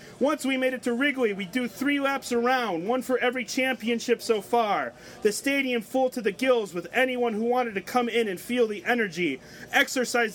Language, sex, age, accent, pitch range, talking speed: English, male, 30-49, American, 220-255 Hz, 205 wpm